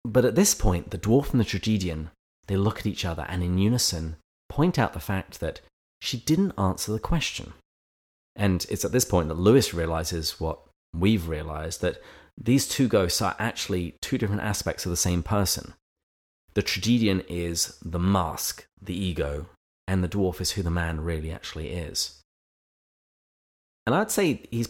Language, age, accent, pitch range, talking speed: English, 30-49, British, 80-105 Hz, 175 wpm